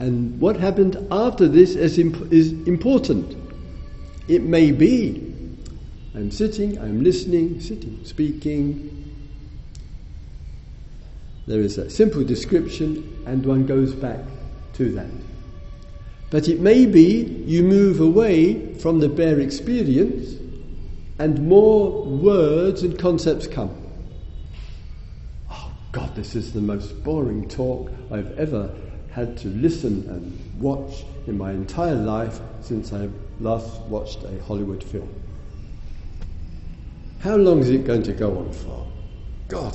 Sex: male